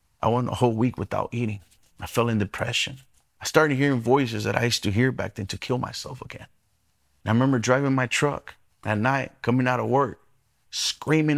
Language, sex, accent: English, male, American